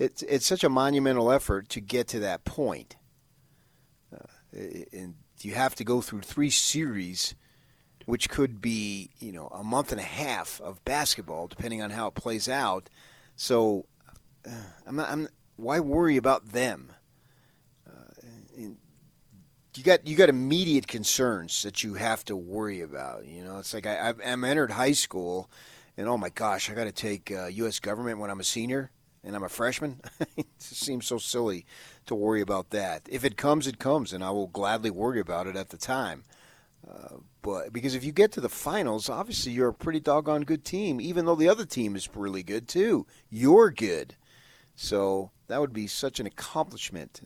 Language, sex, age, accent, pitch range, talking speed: English, male, 40-59, American, 105-135 Hz, 185 wpm